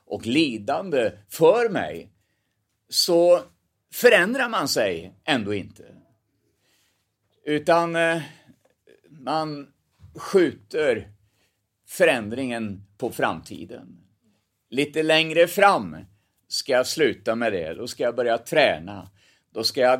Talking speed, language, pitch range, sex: 95 wpm, Swedish, 100-170 Hz, male